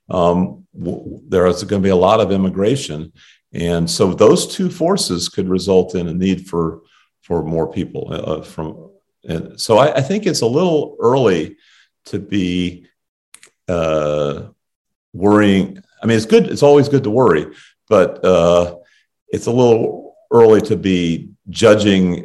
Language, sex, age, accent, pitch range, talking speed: English, male, 50-69, American, 85-105 Hz, 155 wpm